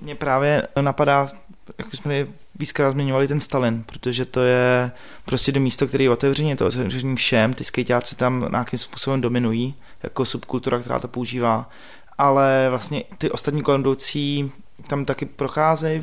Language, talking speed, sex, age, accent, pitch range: Czech, 150 wpm, male, 20-39, native, 120-135 Hz